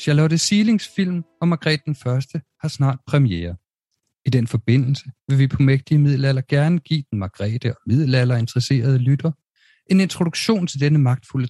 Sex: male